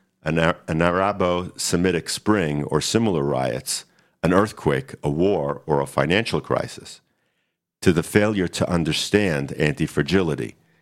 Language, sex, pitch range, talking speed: English, male, 75-100 Hz, 110 wpm